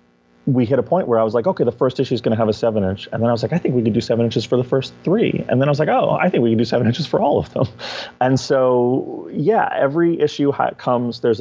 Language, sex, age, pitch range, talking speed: English, male, 30-49, 100-120 Hz, 310 wpm